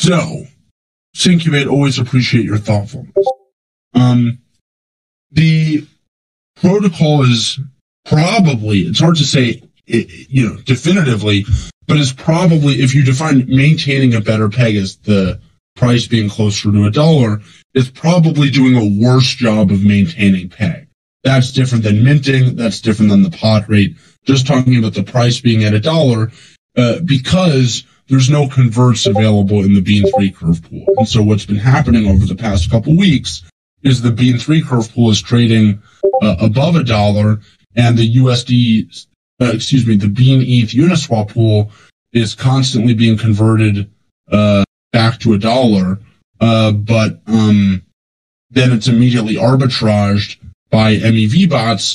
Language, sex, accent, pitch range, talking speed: English, male, American, 105-130 Hz, 150 wpm